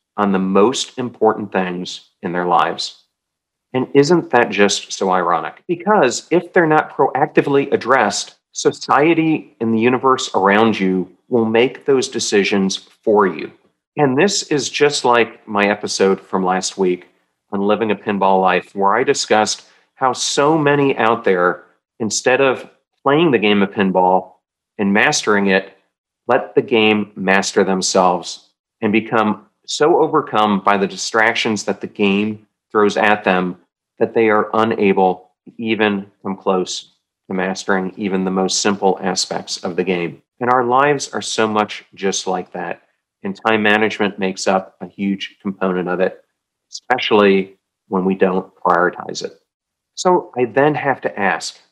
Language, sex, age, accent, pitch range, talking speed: English, male, 40-59, American, 95-115 Hz, 155 wpm